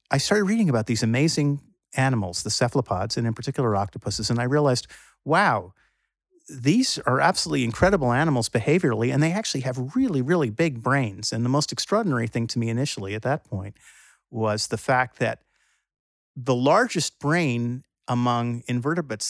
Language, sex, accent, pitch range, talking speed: English, male, American, 110-140 Hz, 160 wpm